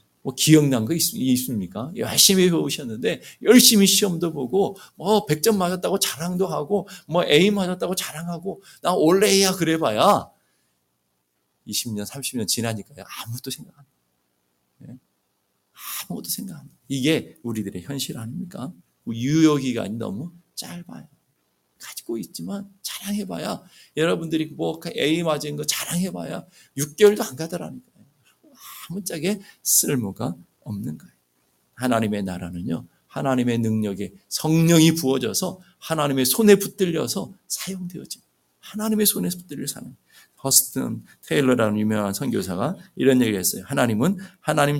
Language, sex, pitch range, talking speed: English, male, 115-190 Hz, 105 wpm